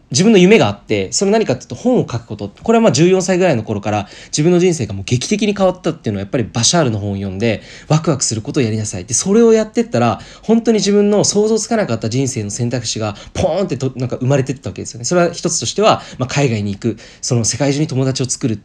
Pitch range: 115-175 Hz